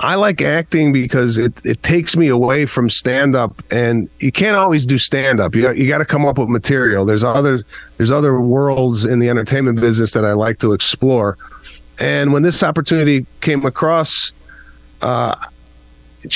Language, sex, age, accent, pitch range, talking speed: English, male, 30-49, American, 115-145 Hz, 175 wpm